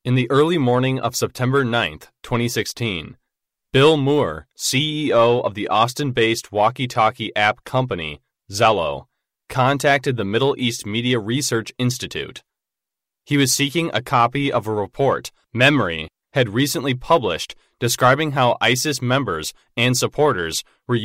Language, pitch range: English, 115-140 Hz